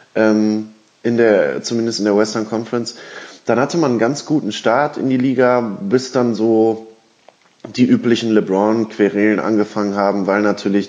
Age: 20-39